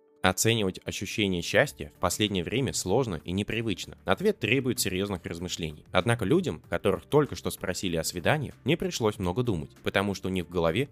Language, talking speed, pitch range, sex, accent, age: Russian, 170 wpm, 90-130 Hz, male, native, 20-39